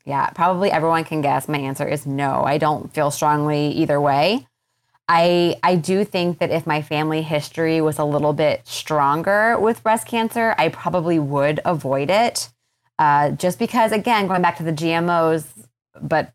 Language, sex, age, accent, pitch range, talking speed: English, female, 20-39, American, 140-175 Hz, 175 wpm